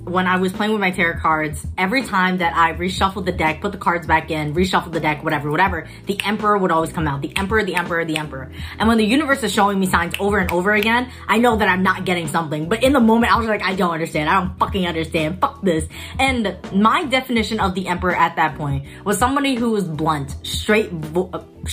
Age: 20-39